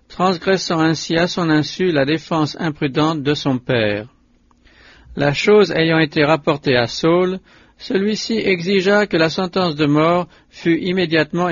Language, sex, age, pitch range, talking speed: English, male, 60-79, 145-180 Hz, 140 wpm